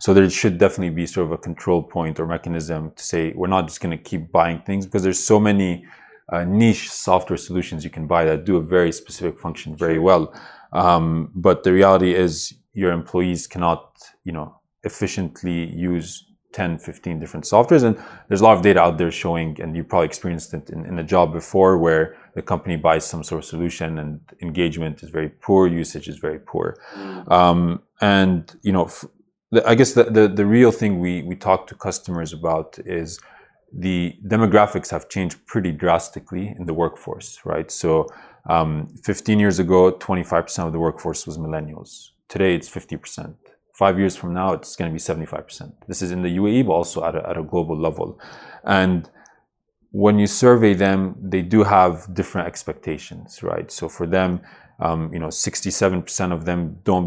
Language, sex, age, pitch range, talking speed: English, male, 20-39, 85-95 Hz, 185 wpm